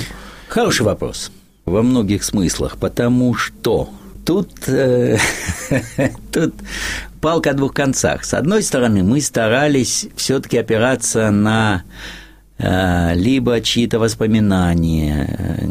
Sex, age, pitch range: male, 50-69, 90-125 Hz